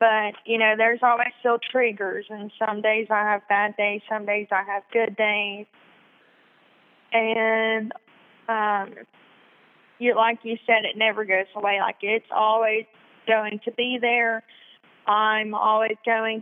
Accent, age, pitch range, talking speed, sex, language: American, 20-39, 210-230 Hz, 145 wpm, female, English